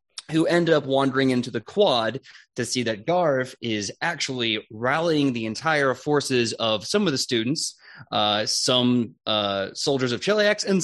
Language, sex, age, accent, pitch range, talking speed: English, male, 20-39, American, 115-170 Hz, 160 wpm